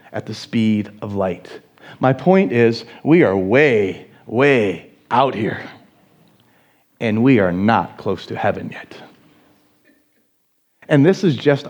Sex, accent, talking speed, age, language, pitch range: male, American, 135 wpm, 40-59, English, 120-165 Hz